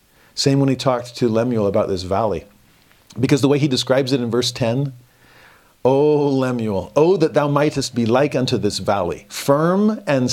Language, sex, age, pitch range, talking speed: English, male, 40-59, 110-145 Hz, 185 wpm